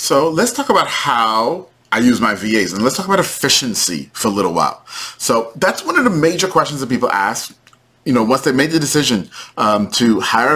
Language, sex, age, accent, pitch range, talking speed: English, male, 30-49, American, 125-165 Hz, 215 wpm